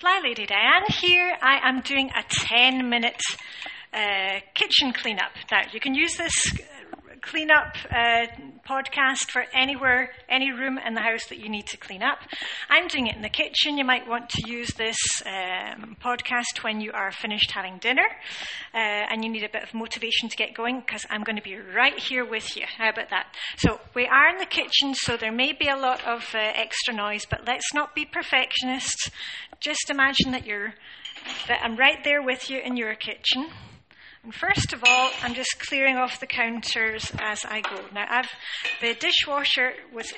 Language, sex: English, female